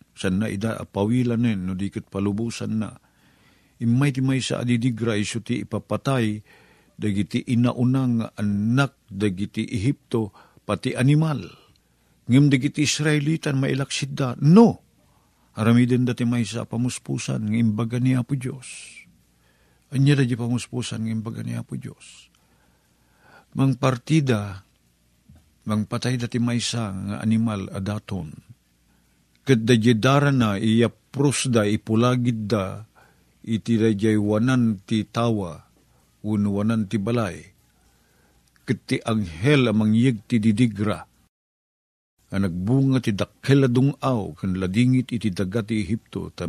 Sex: male